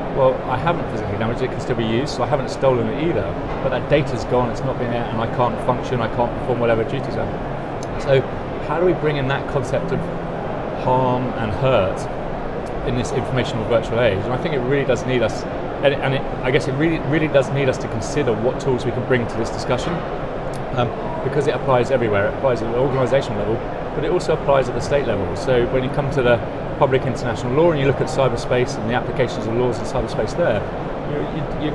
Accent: British